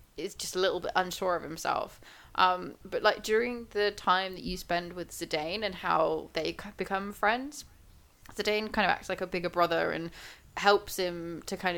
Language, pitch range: English, 170-210 Hz